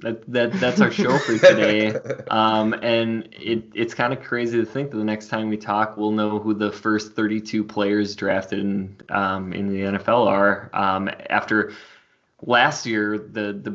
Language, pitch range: English, 100-110 Hz